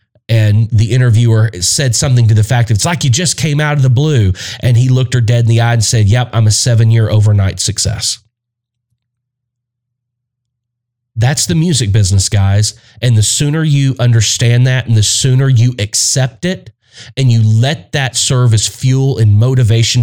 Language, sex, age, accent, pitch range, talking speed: English, male, 30-49, American, 110-125 Hz, 180 wpm